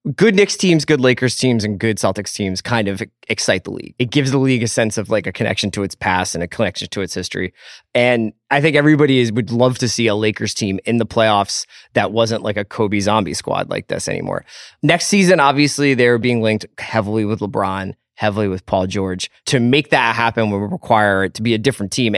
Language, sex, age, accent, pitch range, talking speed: English, male, 20-39, American, 105-130 Hz, 225 wpm